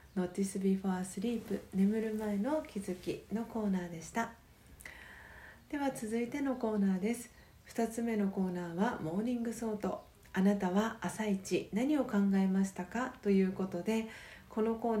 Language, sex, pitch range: Japanese, female, 190-230 Hz